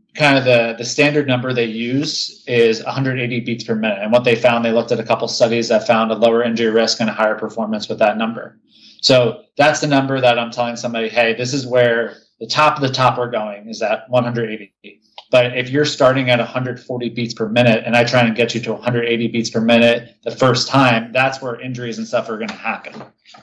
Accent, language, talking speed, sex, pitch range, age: American, English, 235 wpm, male, 115-130 Hz, 30-49